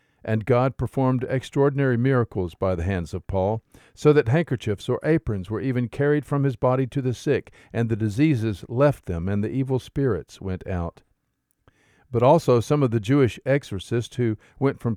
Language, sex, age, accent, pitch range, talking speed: English, male, 50-69, American, 110-140 Hz, 180 wpm